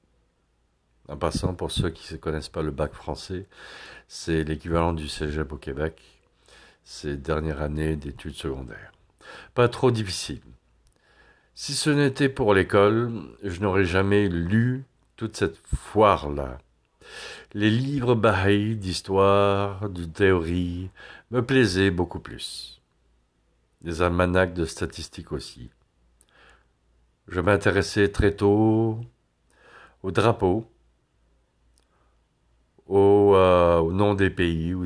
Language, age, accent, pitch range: English, 60-79, French, 80-110 Hz